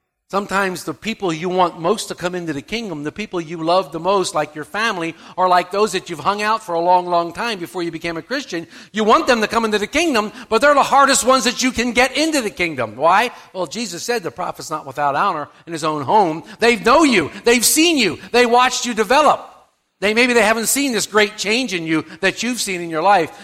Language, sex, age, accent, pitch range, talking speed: English, male, 50-69, American, 170-245 Hz, 245 wpm